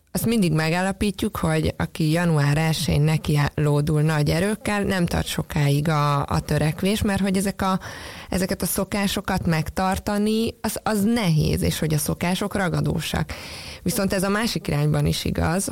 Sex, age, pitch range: female, 20-39, 155-195 Hz